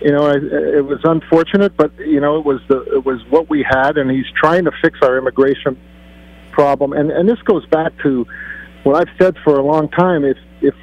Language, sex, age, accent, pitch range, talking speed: English, male, 50-69, American, 135-160 Hz, 220 wpm